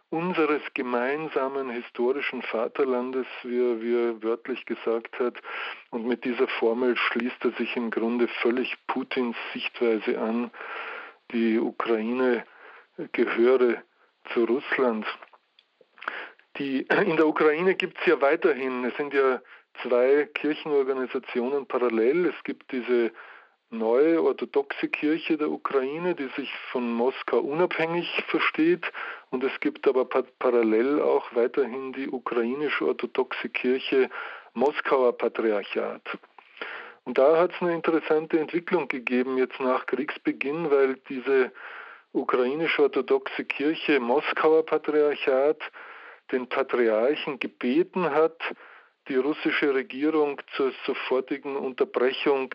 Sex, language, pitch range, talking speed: male, German, 125-180 Hz, 110 wpm